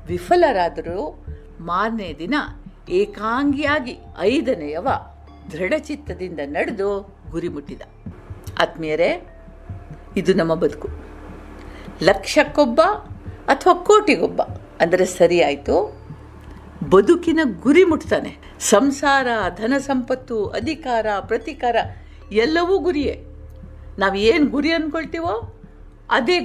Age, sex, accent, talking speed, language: 50-69, female, native, 80 wpm, Kannada